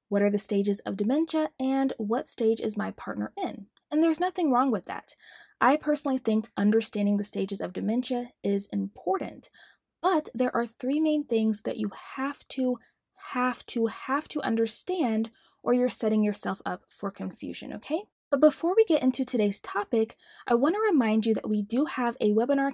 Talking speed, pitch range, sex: 185 wpm, 215-285 Hz, female